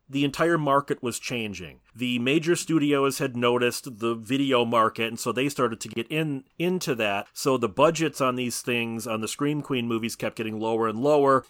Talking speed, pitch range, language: 200 wpm, 115-150 Hz, English